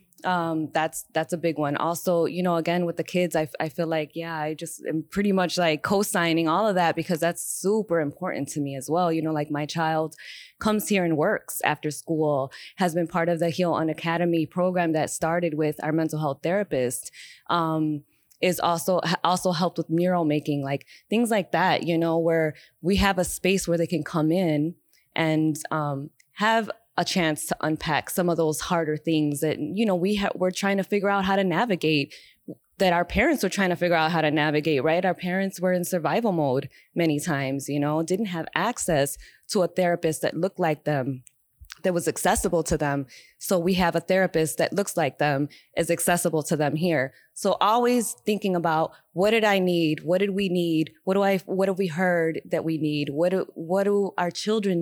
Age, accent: 20-39, American